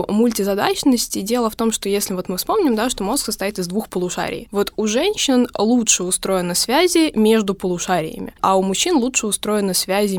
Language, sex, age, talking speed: Russian, female, 20-39, 175 wpm